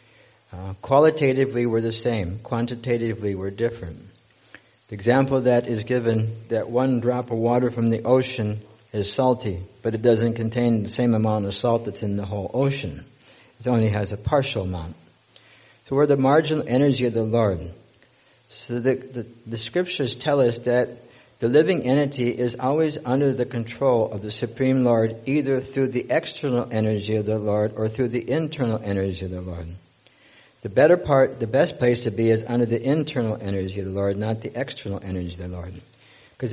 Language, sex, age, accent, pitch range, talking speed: English, male, 60-79, American, 110-130 Hz, 180 wpm